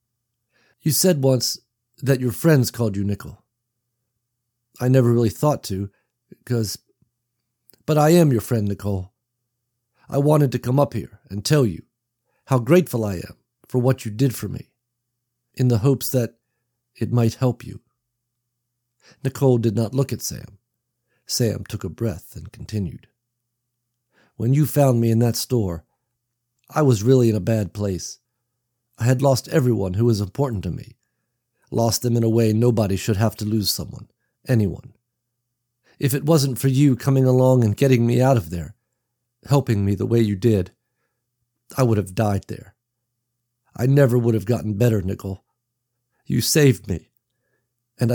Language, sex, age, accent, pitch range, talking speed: English, male, 50-69, American, 115-125 Hz, 160 wpm